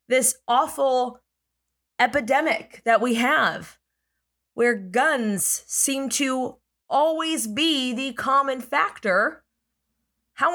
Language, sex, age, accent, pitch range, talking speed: English, female, 20-39, American, 175-255 Hz, 90 wpm